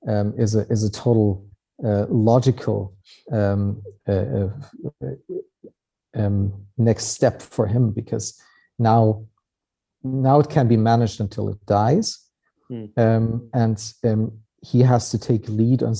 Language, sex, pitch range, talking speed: English, male, 105-125 Hz, 130 wpm